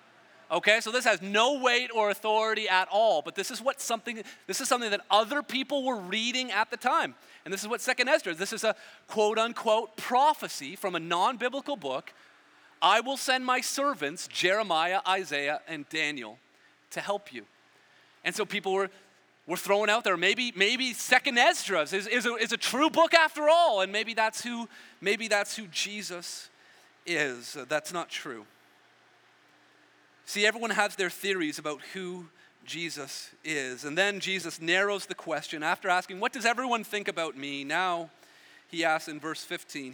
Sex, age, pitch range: male, 30-49, 170-240 Hz